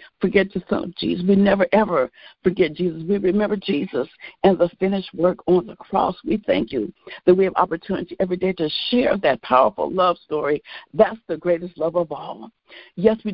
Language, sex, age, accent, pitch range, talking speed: English, female, 60-79, American, 170-195 Hz, 195 wpm